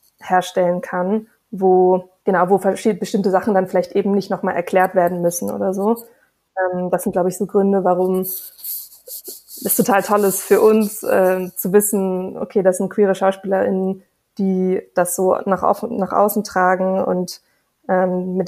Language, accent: German, German